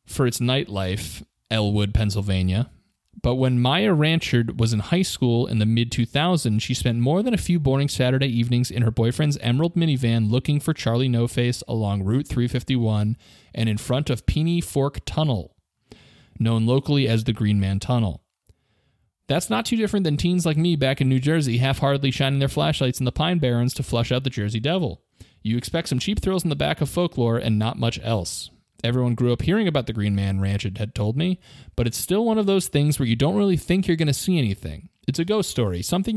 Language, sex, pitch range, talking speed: English, male, 115-155 Hz, 205 wpm